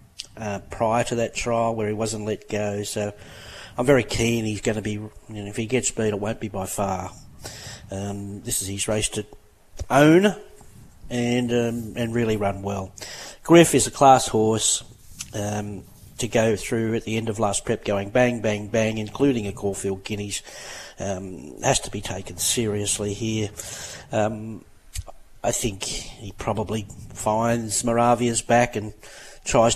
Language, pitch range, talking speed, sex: English, 105-120 Hz, 165 wpm, male